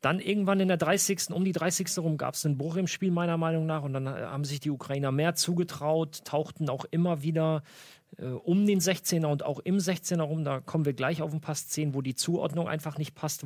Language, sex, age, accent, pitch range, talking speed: German, male, 40-59, German, 135-170 Hz, 235 wpm